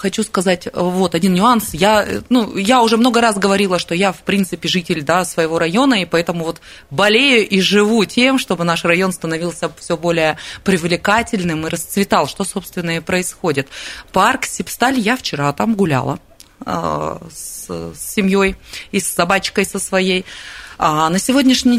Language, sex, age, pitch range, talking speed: Russian, female, 20-39, 165-220 Hz, 155 wpm